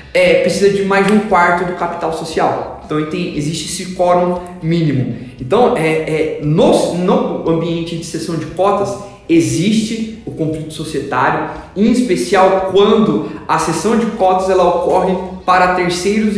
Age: 20-39